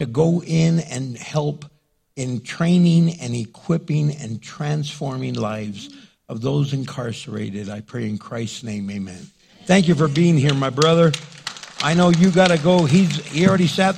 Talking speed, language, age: 160 wpm, English, 60-79